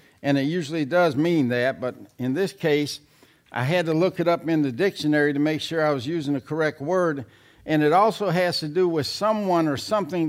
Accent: American